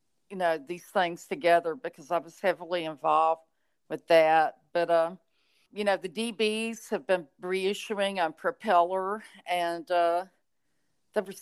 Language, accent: English, American